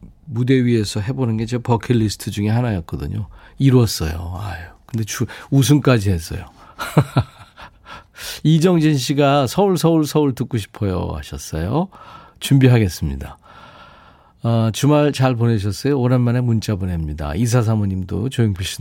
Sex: male